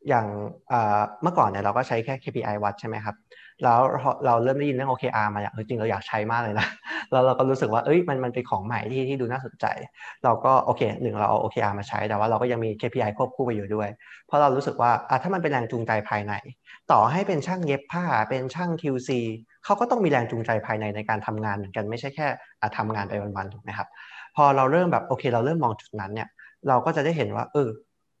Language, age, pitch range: Thai, 20-39, 110-150 Hz